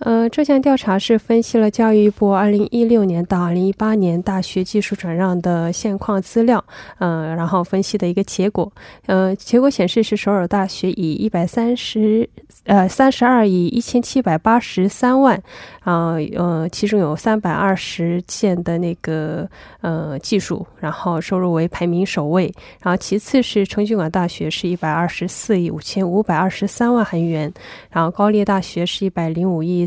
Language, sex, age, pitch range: Korean, female, 20-39, 175-210 Hz